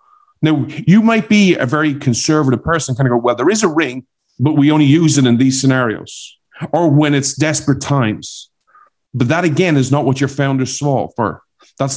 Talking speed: 200 wpm